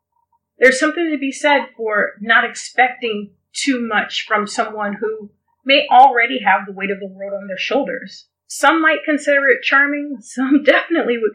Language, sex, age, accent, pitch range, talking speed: English, female, 30-49, American, 205-285 Hz, 170 wpm